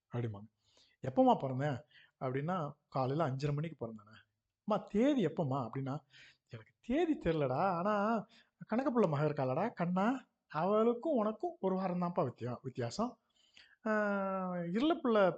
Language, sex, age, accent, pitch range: Tamil, male, 50-69, native, 130-195 Hz